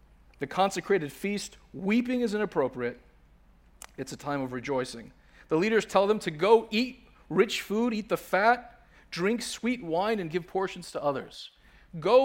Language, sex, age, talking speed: English, male, 40-59, 155 wpm